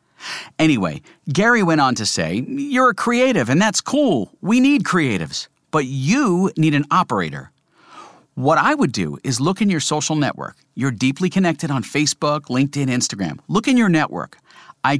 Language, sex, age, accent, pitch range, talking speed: English, male, 50-69, American, 135-190 Hz, 170 wpm